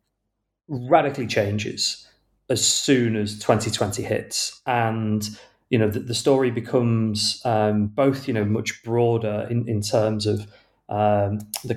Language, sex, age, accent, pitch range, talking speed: English, male, 30-49, British, 105-125 Hz, 135 wpm